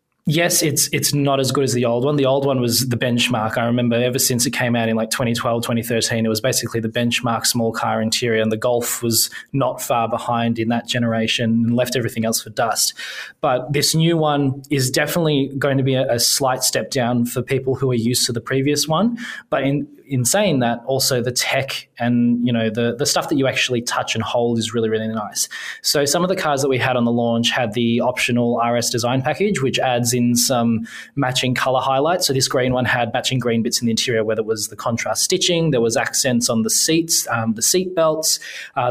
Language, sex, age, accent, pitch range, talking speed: English, male, 20-39, Australian, 120-140 Hz, 230 wpm